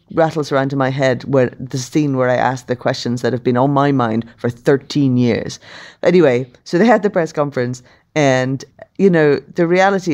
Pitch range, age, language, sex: 125-155 Hz, 30-49, English, female